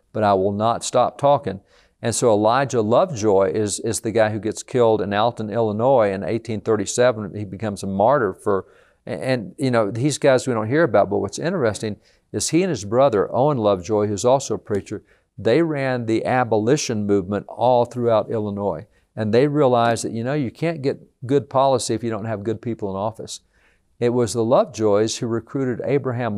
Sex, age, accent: male, 50-69, American